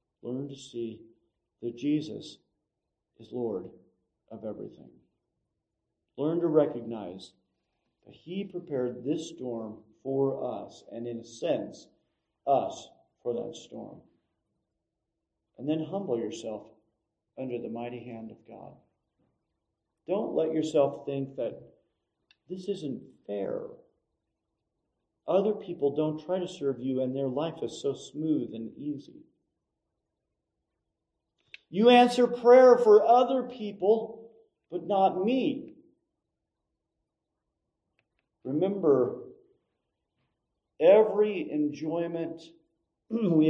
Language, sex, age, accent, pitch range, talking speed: English, male, 50-69, American, 115-180 Hz, 100 wpm